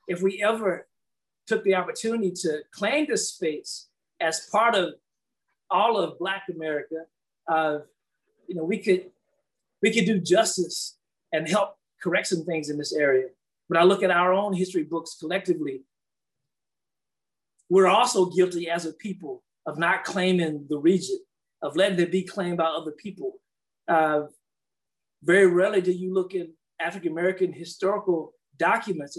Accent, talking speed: American, 150 wpm